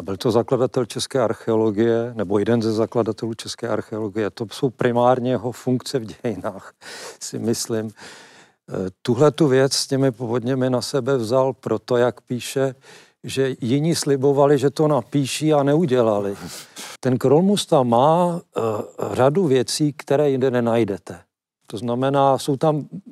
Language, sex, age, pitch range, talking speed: Czech, male, 50-69, 120-140 Hz, 140 wpm